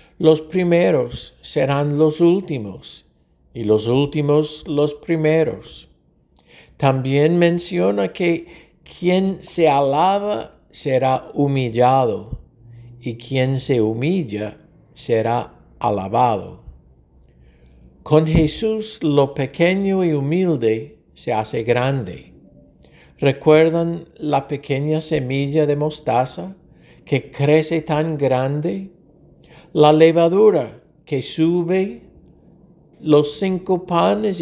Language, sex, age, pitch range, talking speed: English, male, 60-79, 130-170 Hz, 85 wpm